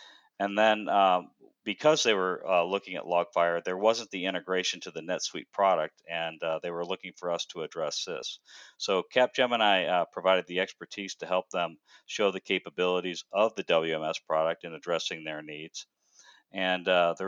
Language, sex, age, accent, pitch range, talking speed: English, male, 50-69, American, 85-100 Hz, 175 wpm